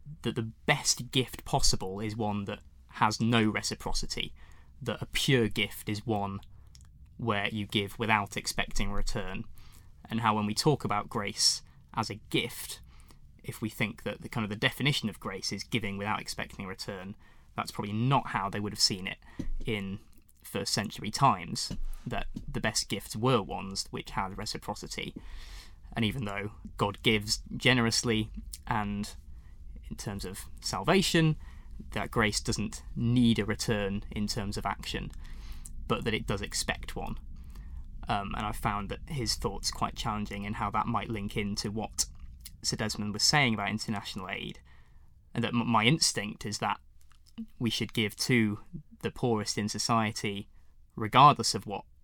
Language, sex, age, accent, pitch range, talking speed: English, male, 20-39, British, 100-115 Hz, 160 wpm